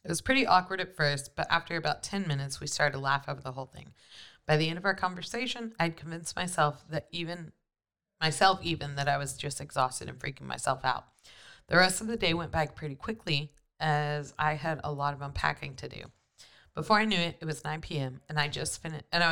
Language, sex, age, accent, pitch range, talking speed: English, female, 30-49, American, 140-170 Hz, 225 wpm